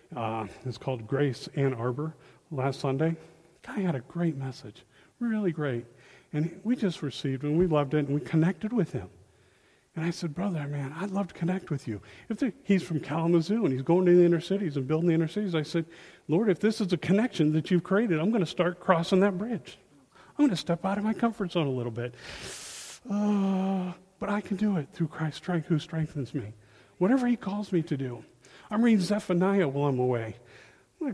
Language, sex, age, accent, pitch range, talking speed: English, male, 40-59, American, 145-200 Hz, 215 wpm